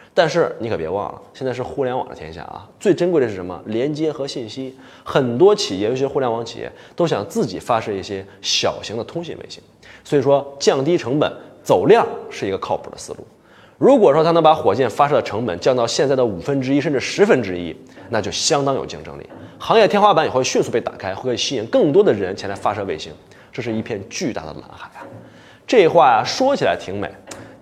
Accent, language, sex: native, Chinese, male